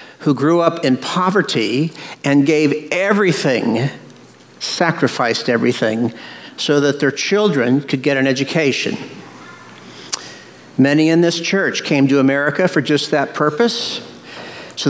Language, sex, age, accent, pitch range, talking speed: English, male, 50-69, American, 135-180 Hz, 120 wpm